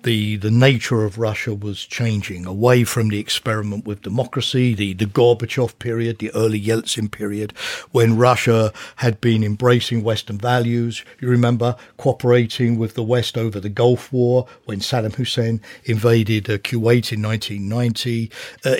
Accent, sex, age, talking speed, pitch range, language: British, male, 50-69, 145 wpm, 110-130 Hz, Dutch